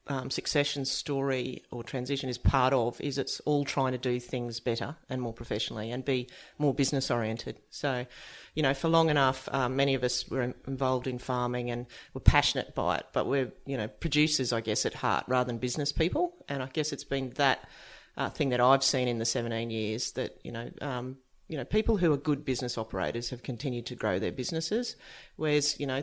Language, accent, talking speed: English, Australian, 210 wpm